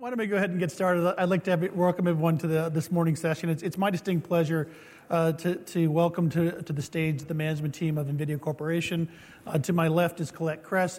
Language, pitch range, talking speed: English, 155-175 Hz, 245 wpm